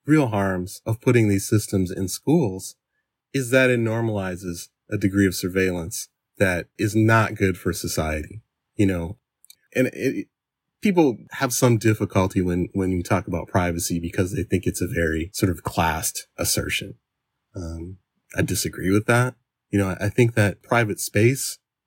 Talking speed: 160 wpm